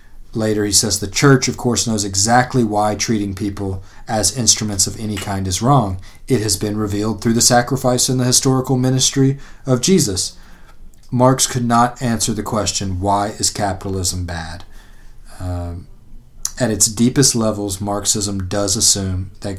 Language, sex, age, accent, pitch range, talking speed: English, male, 30-49, American, 95-110 Hz, 155 wpm